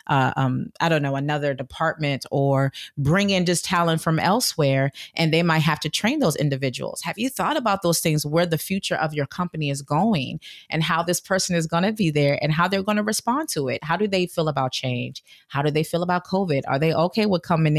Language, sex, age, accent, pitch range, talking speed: English, female, 30-49, American, 140-175 Hz, 235 wpm